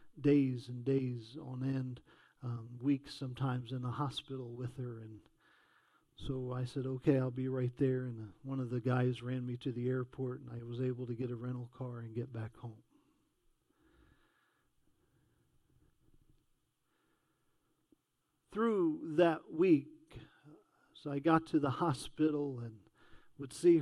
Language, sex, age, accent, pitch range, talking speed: English, male, 50-69, American, 125-145 Hz, 145 wpm